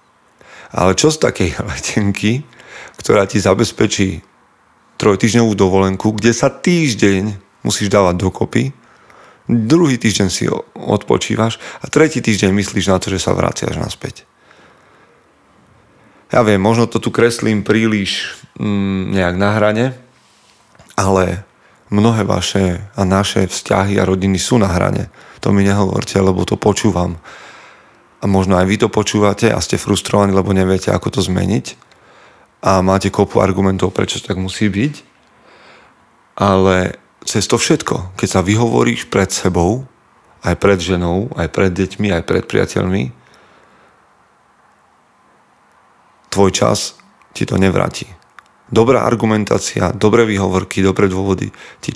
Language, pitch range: Slovak, 95-110 Hz